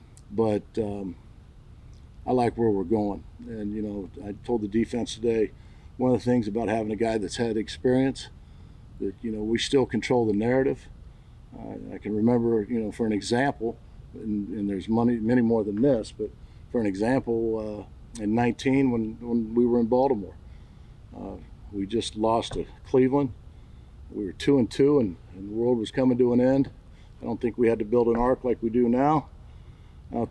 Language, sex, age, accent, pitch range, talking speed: English, male, 50-69, American, 105-120 Hz, 195 wpm